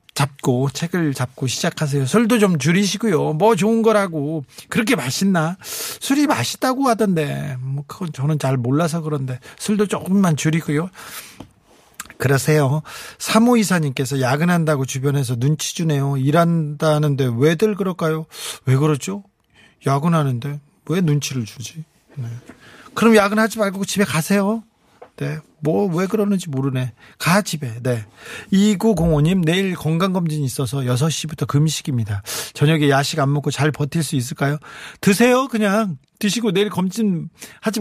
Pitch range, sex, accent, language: 145-205 Hz, male, native, Korean